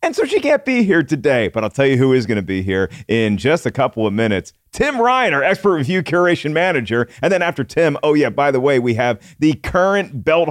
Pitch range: 120-160 Hz